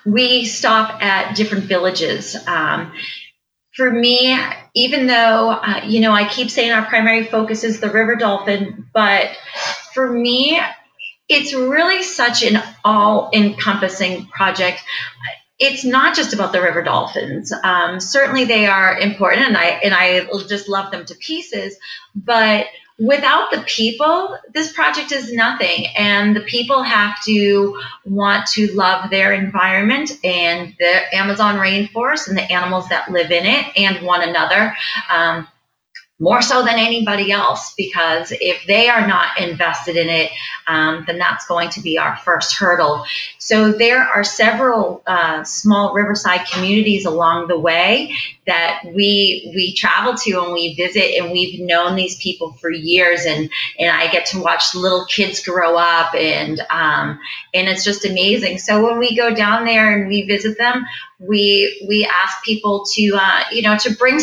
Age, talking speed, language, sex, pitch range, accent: 30-49, 155 wpm, English, female, 180-230 Hz, American